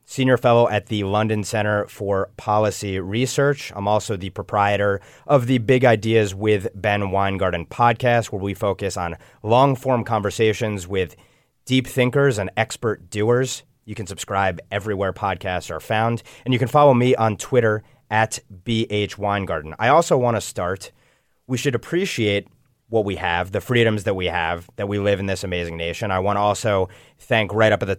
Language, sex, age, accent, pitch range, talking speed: English, male, 30-49, American, 95-120 Hz, 175 wpm